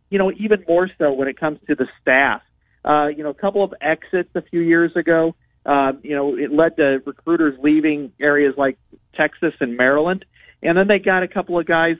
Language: English